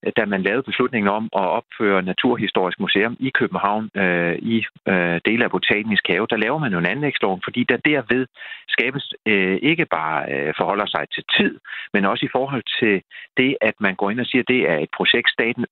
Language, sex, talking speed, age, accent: Danish, male, 200 wpm, 40-59, native